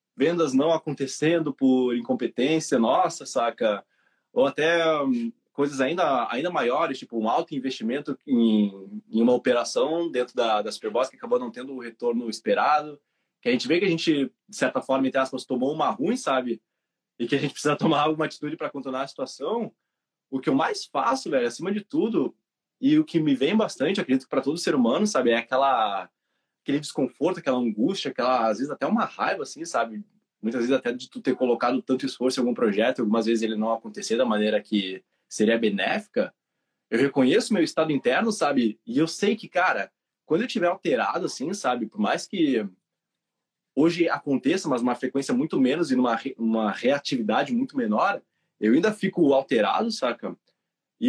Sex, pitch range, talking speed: male, 130-215 Hz, 185 wpm